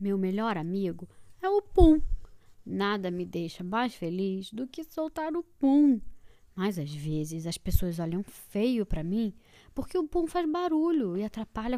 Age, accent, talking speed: 20-39, Brazilian, 165 wpm